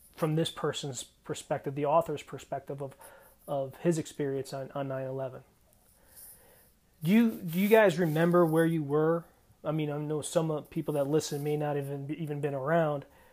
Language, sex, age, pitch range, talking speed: English, male, 30-49, 140-165 Hz, 170 wpm